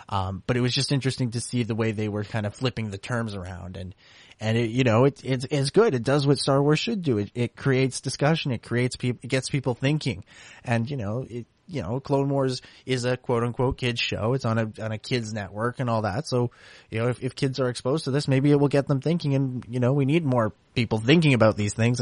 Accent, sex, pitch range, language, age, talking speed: American, male, 105-130 Hz, English, 20-39, 260 wpm